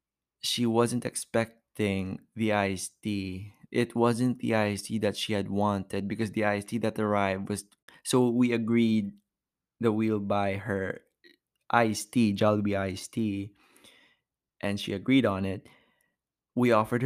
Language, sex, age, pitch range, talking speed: English, male, 20-39, 100-115 Hz, 135 wpm